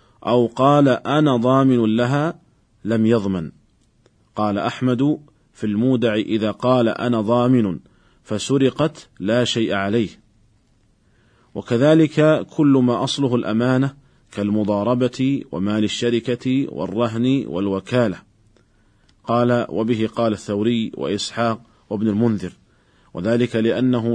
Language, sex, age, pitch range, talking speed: Arabic, male, 40-59, 110-130 Hz, 95 wpm